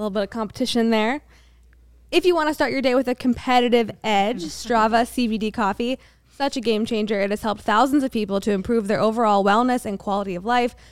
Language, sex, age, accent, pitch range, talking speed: English, female, 20-39, American, 195-240 Hz, 210 wpm